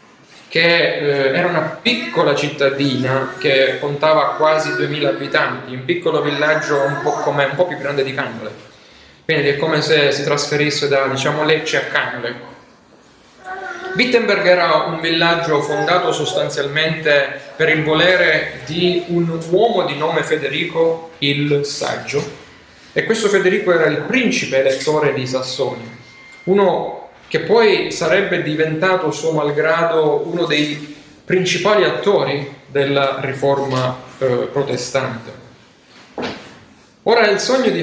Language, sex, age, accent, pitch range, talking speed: Italian, male, 30-49, native, 140-175 Hz, 120 wpm